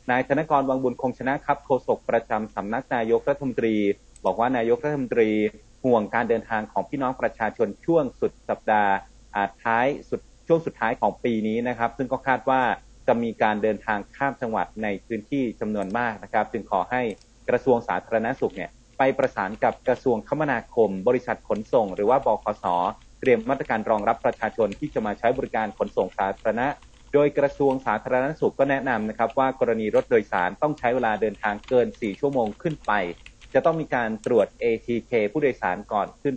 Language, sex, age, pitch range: Thai, male, 30-49, 110-135 Hz